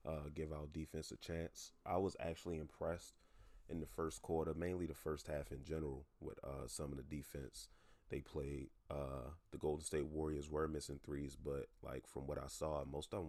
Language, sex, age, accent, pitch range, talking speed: English, male, 30-49, American, 70-80 Hz, 205 wpm